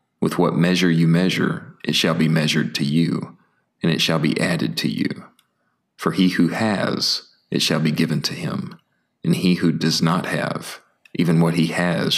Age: 40-59